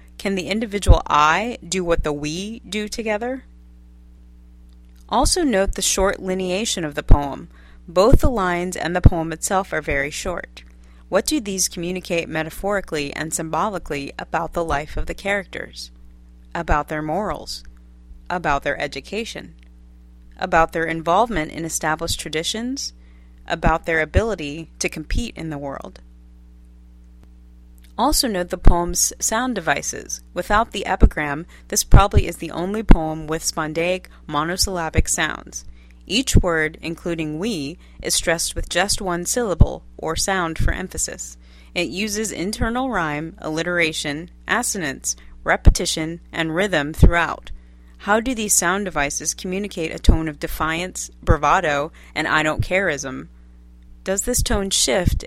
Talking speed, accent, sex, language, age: 135 wpm, American, female, English, 30-49